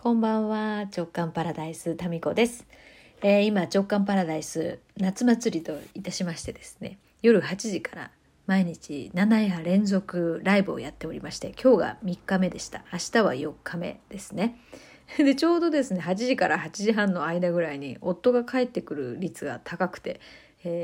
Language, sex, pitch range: Japanese, female, 175-220 Hz